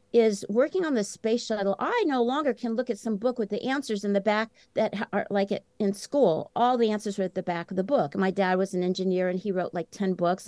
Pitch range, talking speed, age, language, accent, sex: 190-235 Hz, 270 wpm, 50-69, English, American, female